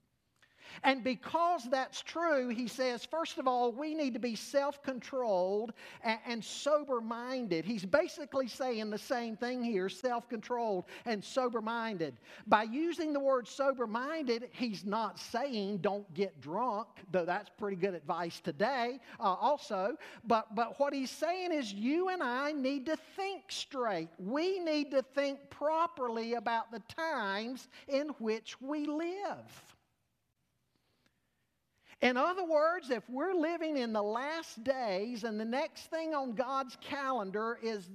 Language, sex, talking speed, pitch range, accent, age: English, male, 140 wpm, 225-295 Hz, American, 50-69